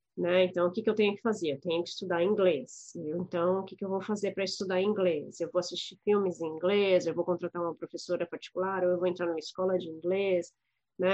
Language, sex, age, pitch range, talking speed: Portuguese, female, 20-39, 175-220 Hz, 250 wpm